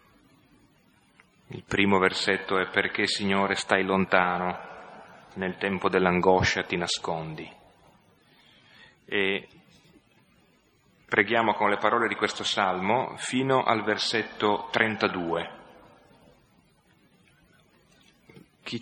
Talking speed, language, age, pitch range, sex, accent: 85 wpm, Italian, 30-49, 95-110 Hz, male, native